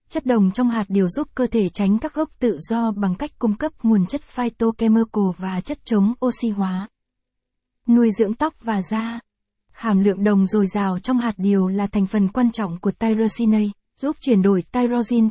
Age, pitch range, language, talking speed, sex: 20-39, 200-240 Hz, Vietnamese, 190 wpm, female